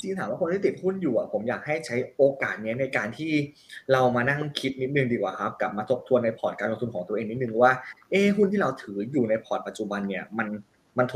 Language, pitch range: Thai, 115-150 Hz